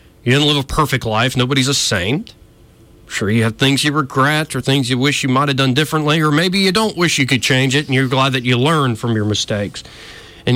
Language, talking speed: English, 245 wpm